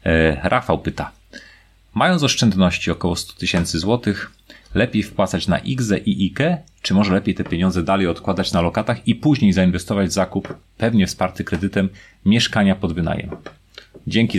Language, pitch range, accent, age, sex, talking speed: Polish, 95-110 Hz, native, 30-49, male, 145 wpm